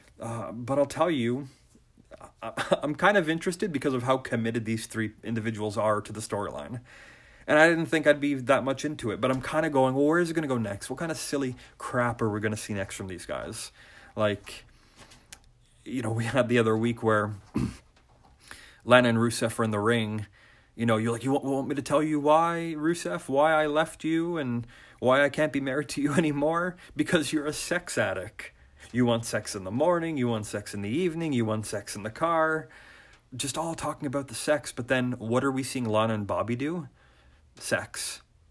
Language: English